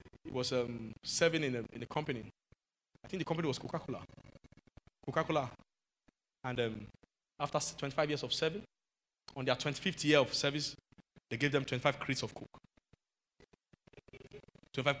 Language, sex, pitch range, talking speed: English, male, 140-195 Hz, 150 wpm